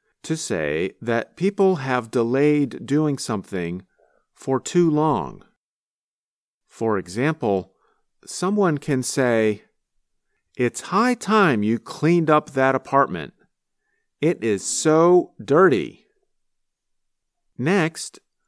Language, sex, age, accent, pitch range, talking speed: English, male, 50-69, American, 110-160 Hz, 95 wpm